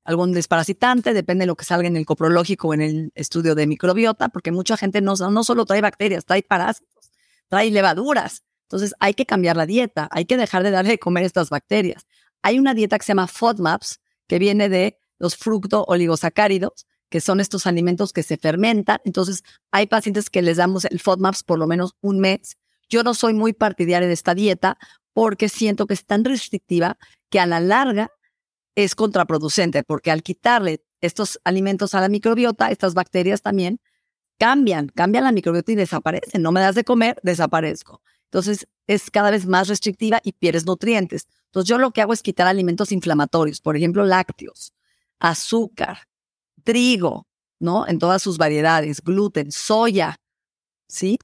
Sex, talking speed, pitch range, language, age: female, 175 wpm, 175-210 Hz, Spanish, 40-59